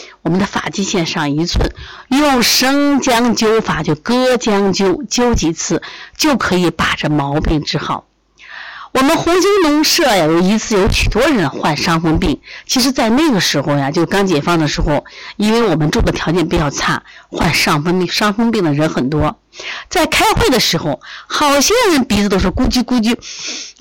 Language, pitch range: Chinese, 180-285 Hz